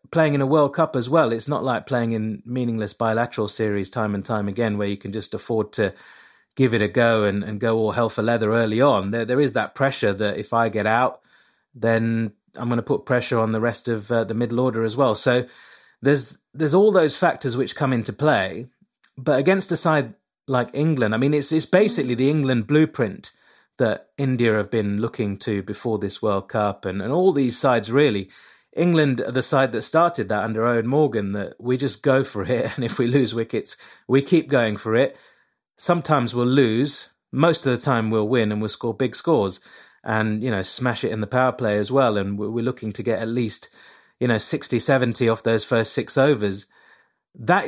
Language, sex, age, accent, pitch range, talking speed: English, male, 30-49, British, 110-135 Hz, 215 wpm